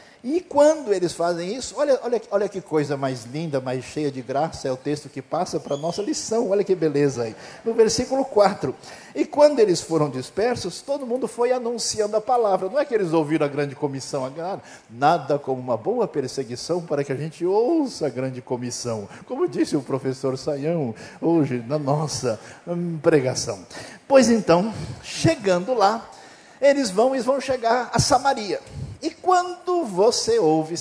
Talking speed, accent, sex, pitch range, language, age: 170 wpm, Brazilian, male, 140-230 Hz, Portuguese, 50-69